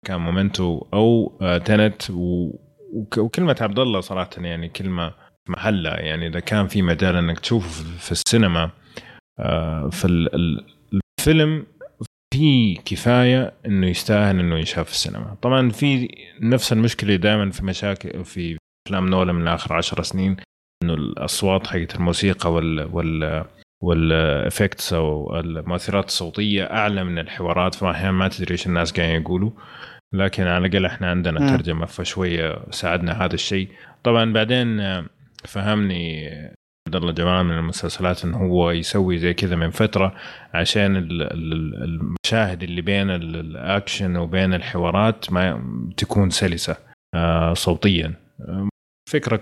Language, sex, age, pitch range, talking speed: Arabic, male, 30-49, 85-105 Hz, 125 wpm